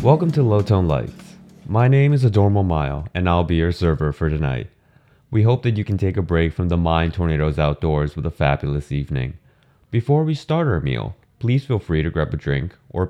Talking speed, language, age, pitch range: 215 wpm, English, 20-39, 80-130 Hz